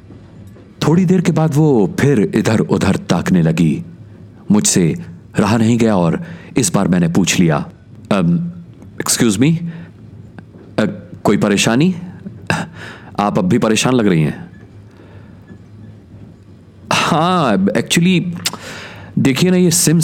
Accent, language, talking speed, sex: native, Hindi, 115 wpm, male